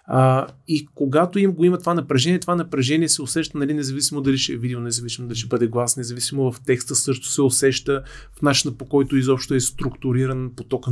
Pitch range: 125-150 Hz